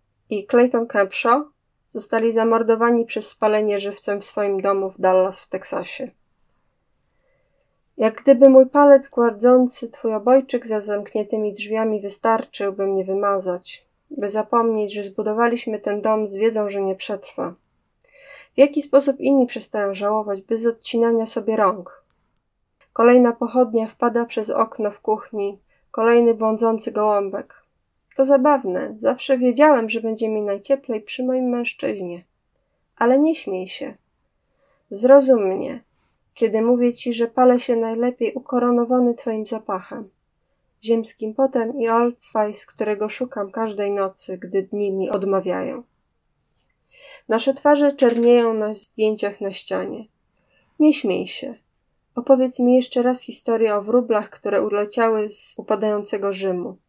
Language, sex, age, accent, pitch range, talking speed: Polish, female, 20-39, native, 205-245 Hz, 130 wpm